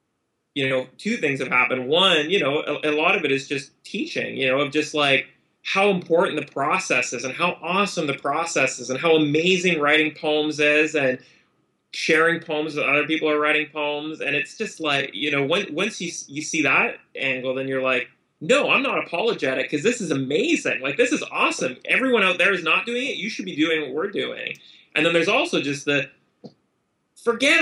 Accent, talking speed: American, 210 wpm